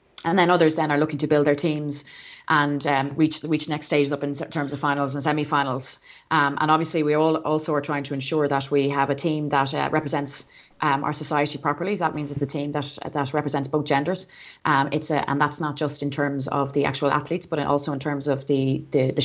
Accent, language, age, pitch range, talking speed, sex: Irish, English, 30-49, 145-160 Hz, 240 wpm, female